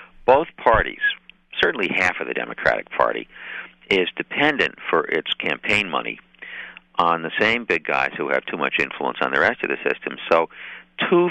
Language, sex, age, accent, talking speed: English, male, 50-69, American, 170 wpm